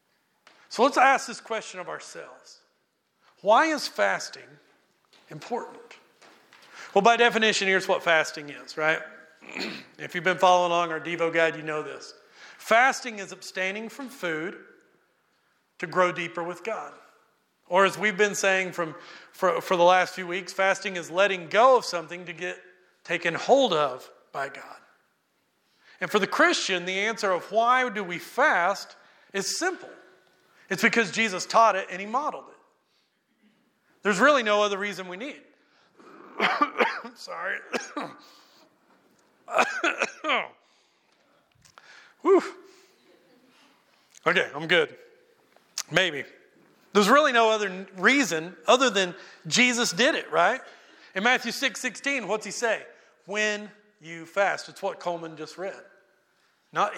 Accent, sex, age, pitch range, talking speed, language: American, male, 40-59, 180-245 Hz, 135 wpm, English